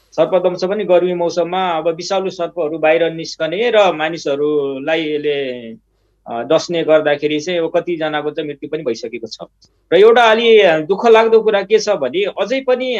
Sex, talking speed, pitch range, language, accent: male, 90 wpm, 165-205 Hz, English, Indian